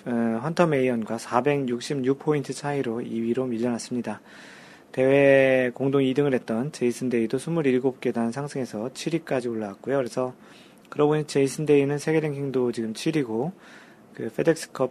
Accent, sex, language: native, male, Korean